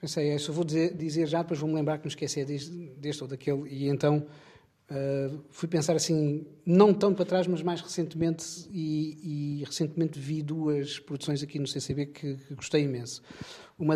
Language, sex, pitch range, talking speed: Portuguese, male, 140-155 Hz, 195 wpm